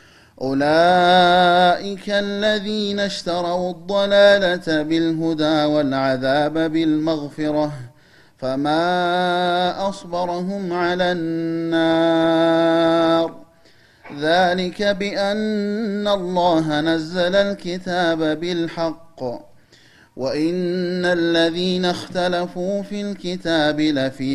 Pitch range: 155-180 Hz